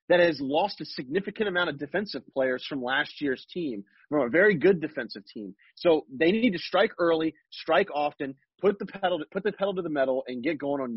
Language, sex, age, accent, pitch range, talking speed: English, male, 30-49, American, 140-175 Hz, 225 wpm